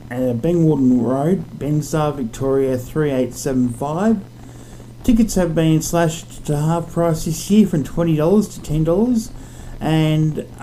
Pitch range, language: 125-160 Hz, English